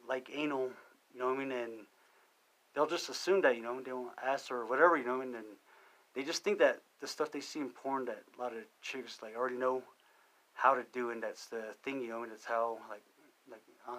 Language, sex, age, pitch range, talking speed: English, male, 30-49, 115-135 Hz, 260 wpm